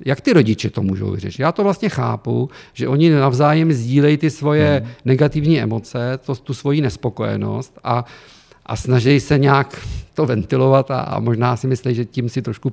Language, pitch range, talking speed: Czech, 110-130 Hz, 165 wpm